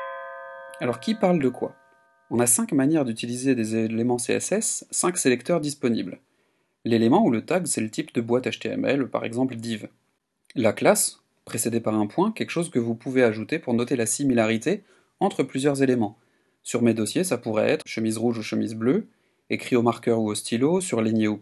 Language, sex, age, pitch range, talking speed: French, male, 30-49, 115-140 Hz, 190 wpm